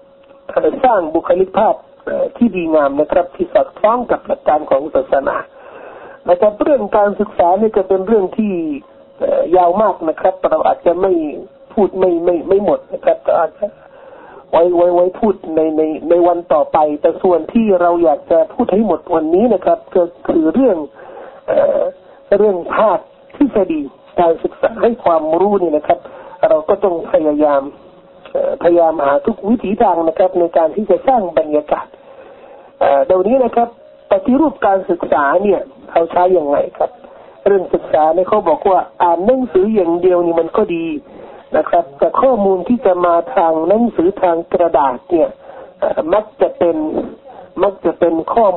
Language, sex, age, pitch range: Thai, male, 60-79, 170-260 Hz